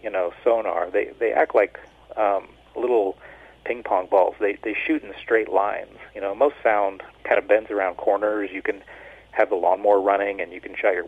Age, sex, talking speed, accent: 40-59, male, 205 wpm, American